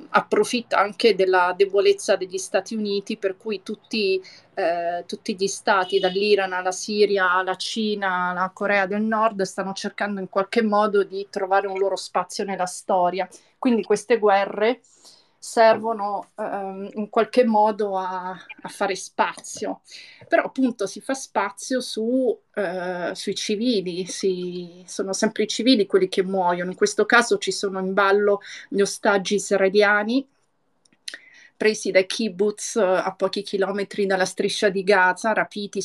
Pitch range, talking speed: 185-215 Hz, 140 wpm